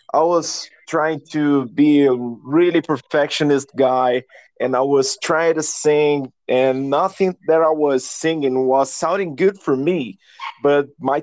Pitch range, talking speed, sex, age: 135-175 Hz, 150 wpm, male, 20-39